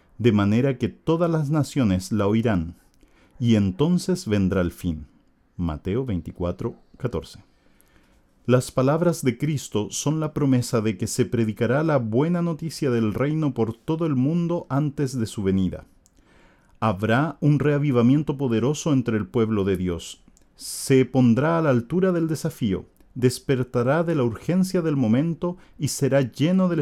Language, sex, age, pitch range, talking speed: Portuguese, male, 40-59, 110-145 Hz, 150 wpm